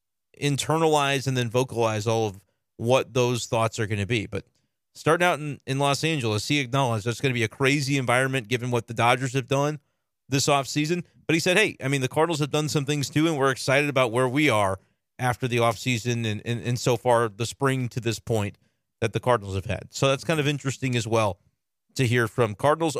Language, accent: English, American